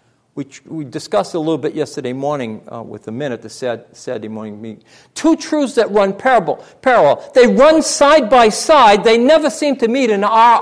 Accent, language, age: American, English, 50-69